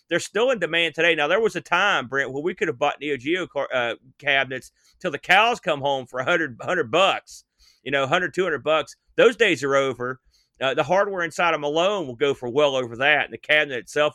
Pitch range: 140-200 Hz